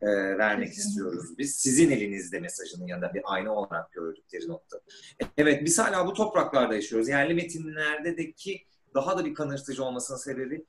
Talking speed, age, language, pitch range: 155 wpm, 30-49, Turkish, 130-170 Hz